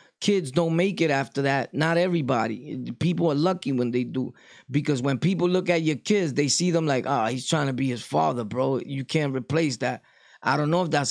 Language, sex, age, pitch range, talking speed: English, male, 20-39, 135-160 Hz, 225 wpm